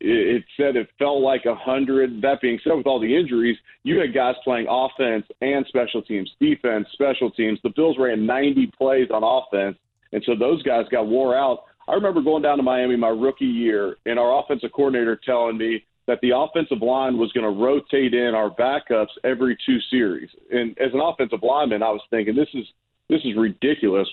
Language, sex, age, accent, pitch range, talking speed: English, male, 40-59, American, 115-135 Hz, 200 wpm